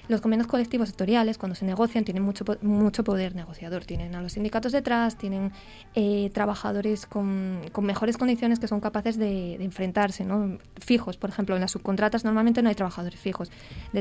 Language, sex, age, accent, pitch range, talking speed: Spanish, female, 20-39, Spanish, 200-230 Hz, 185 wpm